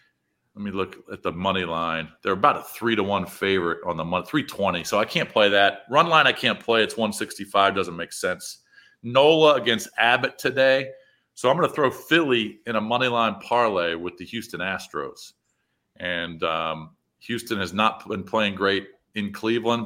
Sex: male